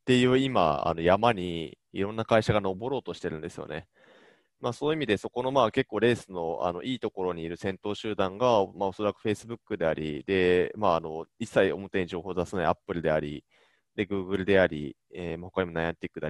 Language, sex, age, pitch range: Japanese, male, 20-39, 90-120 Hz